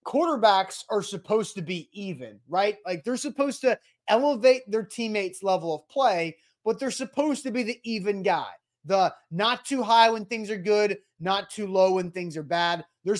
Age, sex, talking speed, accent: 20-39, male, 180 wpm, American